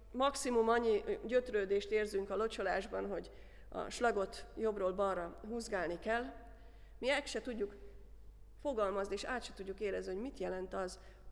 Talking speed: 140 wpm